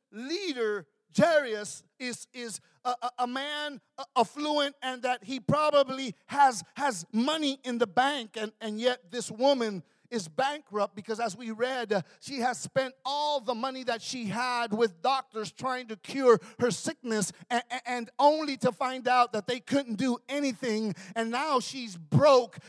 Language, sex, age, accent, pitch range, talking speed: English, male, 40-59, American, 165-245 Hz, 160 wpm